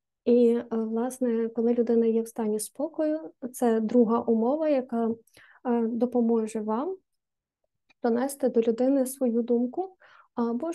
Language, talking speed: Ukrainian, 110 wpm